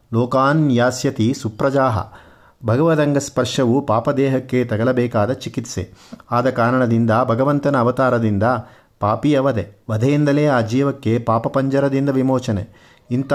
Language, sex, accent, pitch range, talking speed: Kannada, male, native, 115-135 Hz, 85 wpm